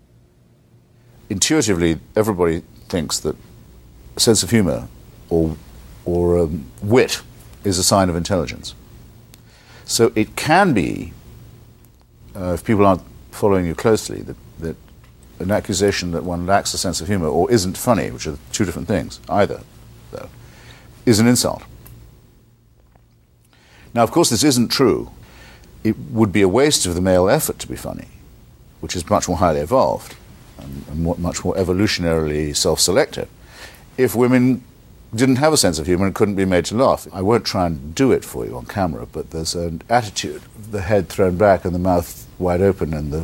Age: 50-69